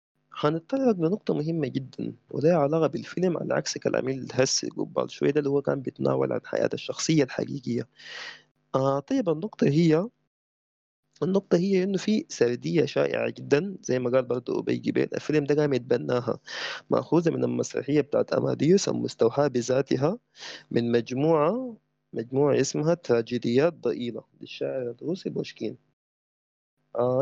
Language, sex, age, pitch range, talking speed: Arabic, male, 20-39, 125-180 Hz, 130 wpm